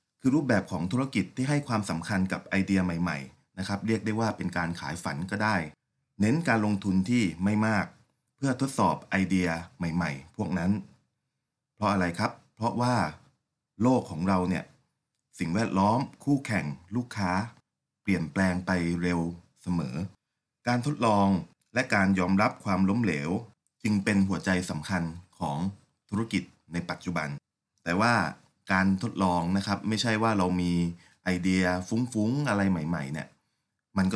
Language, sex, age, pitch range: Thai, male, 30-49, 90-110 Hz